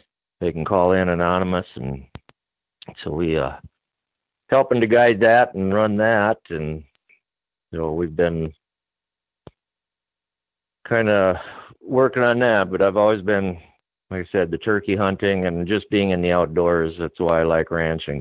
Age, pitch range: 50-69, 80-95 Hz